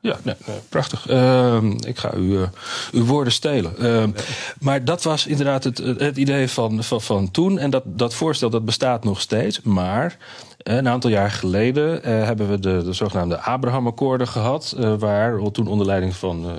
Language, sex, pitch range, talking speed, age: Dutch, male, 95-130 Hz, 185 wpm, 40-59